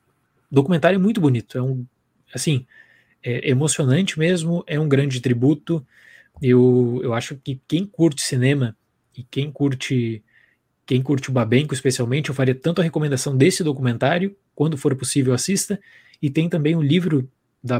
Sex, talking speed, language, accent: male, 150 wpm, Portuguese, Brazilian